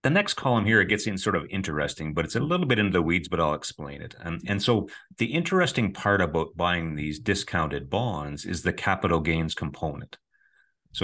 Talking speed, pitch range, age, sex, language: 210 wpm, 75-100 Hz, 30-49, male, English